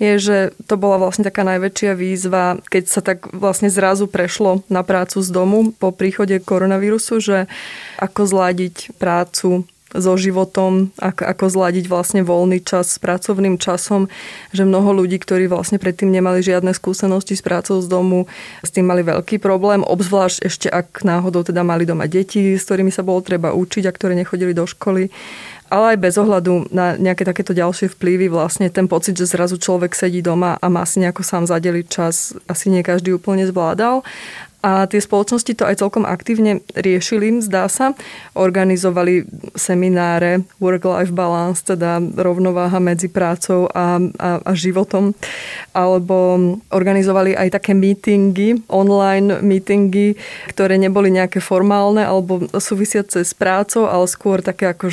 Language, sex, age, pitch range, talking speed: Slovak, female, 20-39, 180-195 Hz, 155 wpm